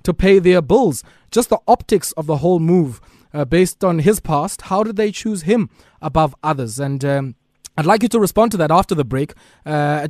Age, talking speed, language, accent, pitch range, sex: 20-39, 215 wpm, English, South African, 140-185 Hz, male